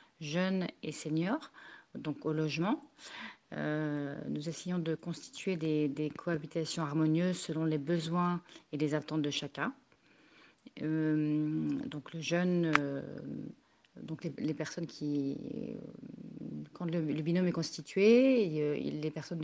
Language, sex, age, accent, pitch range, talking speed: French, female, 40-59, French, 155-185 Hz, 135 wpm